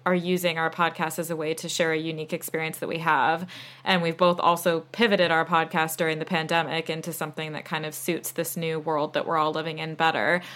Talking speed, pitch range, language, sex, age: 225 wpm, 155-175 Hz, English, female, 20-39